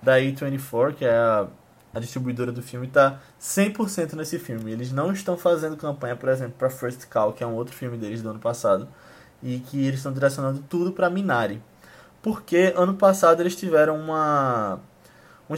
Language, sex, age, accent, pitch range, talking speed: Portuguese, male, 20-39, Brazilian, 130-175 Hz, 180 wpm